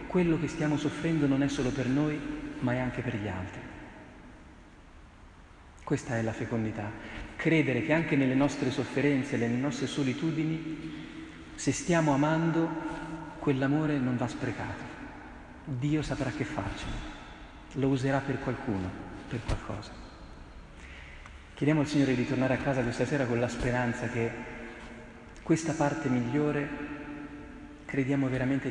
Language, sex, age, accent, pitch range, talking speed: Italian, male, 40-59, native, 115-145 Hz, 130 wpm